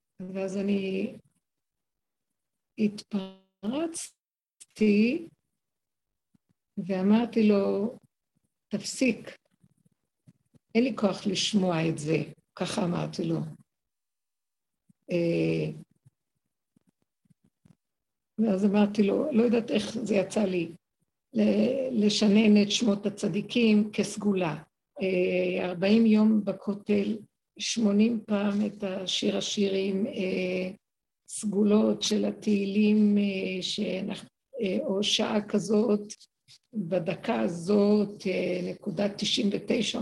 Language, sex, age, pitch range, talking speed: Hebrew, female, 60-79, 190-215 Hz, 75 wpm